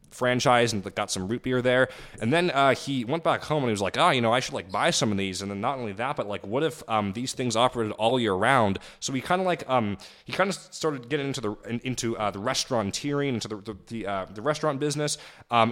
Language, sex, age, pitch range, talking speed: English, male, 20-39, 100-135 Hz, 275 wpm